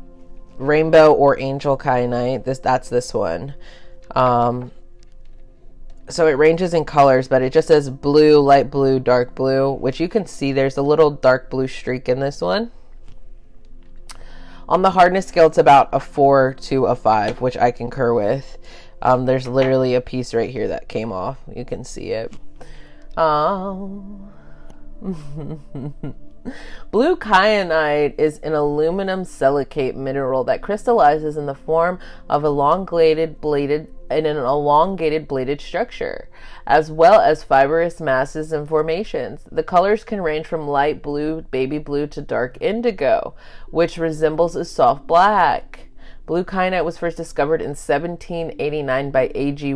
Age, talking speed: 20-39, 135 wpm